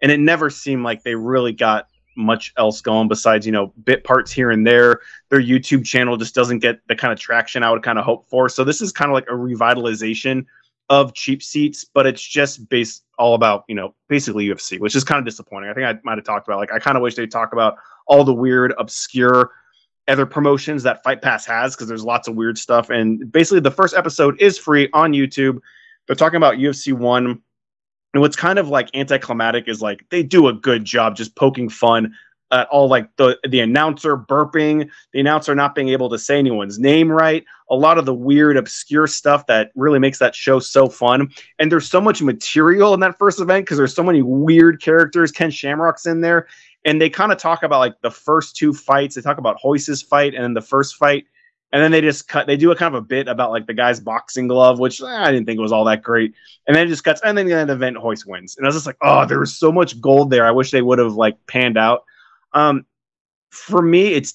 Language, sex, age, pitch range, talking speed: English, male, 20-39, 120-150 Hz, 240 wpm